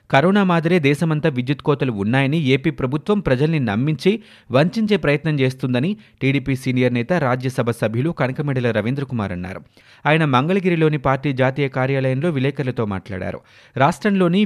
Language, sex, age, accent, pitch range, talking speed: Telugu, male, 30-49, native, 125-155 Hz, 125 wpm